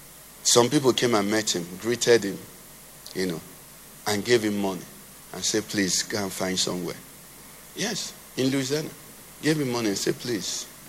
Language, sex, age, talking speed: English, male, 50-69, 165 wpm